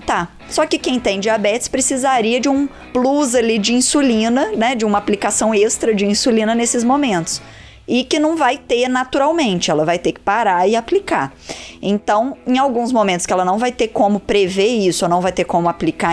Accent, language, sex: Brazilian, Portuguese, female